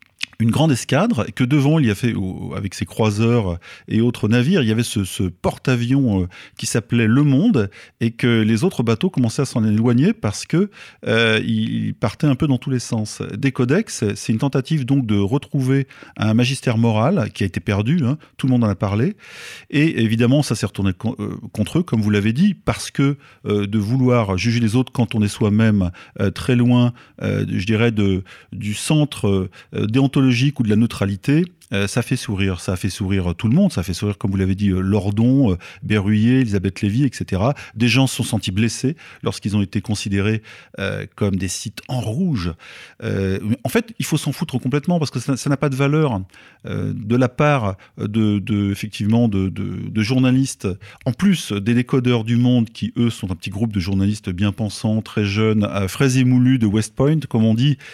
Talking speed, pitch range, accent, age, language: 195 wpm, 105-130 Hz, French, 40-59, French